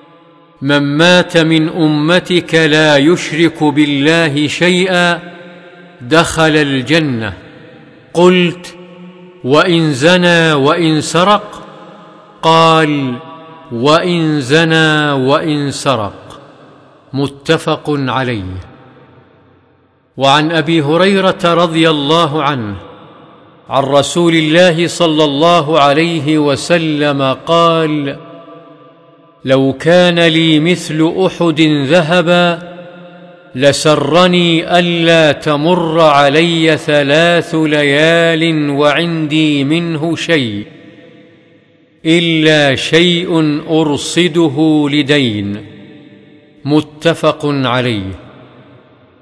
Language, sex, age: Arabic, male, 50-69